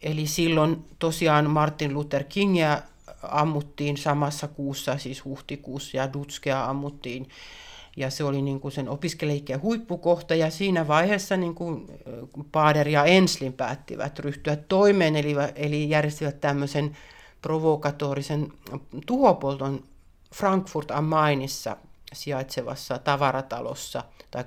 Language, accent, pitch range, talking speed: Finnish, native, 140-170 Hz, 105 wpm